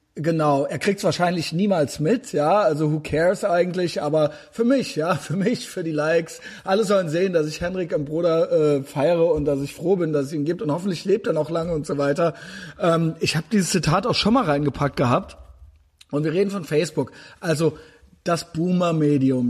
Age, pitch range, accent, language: 30-49, 150-190 Hz, German, German